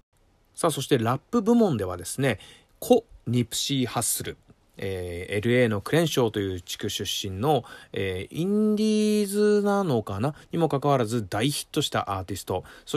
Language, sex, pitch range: Japanese, male, 110-155 Hz